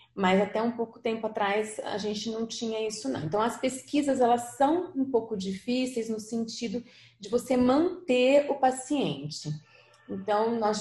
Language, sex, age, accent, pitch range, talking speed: Portuguese, female, 30-49, Brazilian, 195-250 Hz, 160 wpm